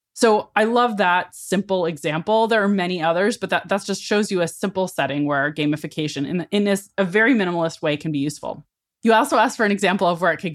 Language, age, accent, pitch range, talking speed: English, 20-39, American, 165-205 Hz, 230 wpm